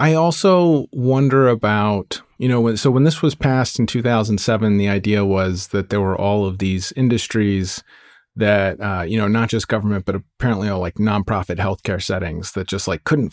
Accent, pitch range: American, 95-115 Hz